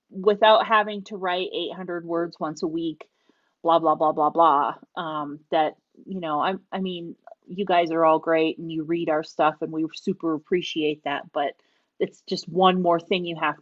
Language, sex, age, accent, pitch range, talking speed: English, female, 30-49, American, 165-220 Hz, 195 wpm